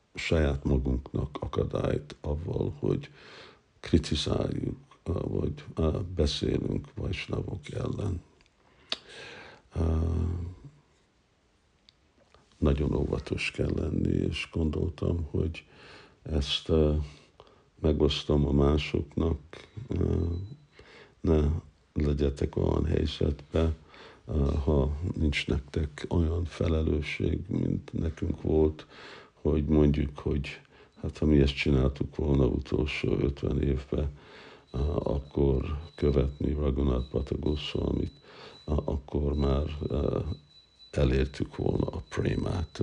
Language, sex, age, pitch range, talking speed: Hungarian, male, 60-79, 70-85 Hz, 80 wpm